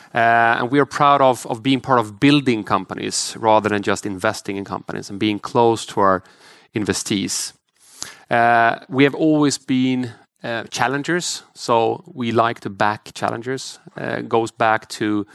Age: 30-49